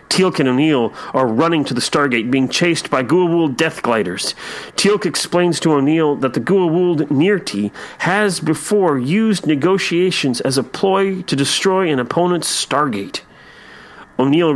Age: 40-59